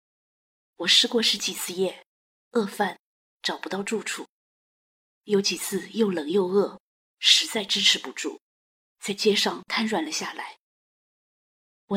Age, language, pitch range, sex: 20-39, Chinese, 190-230 Hz, female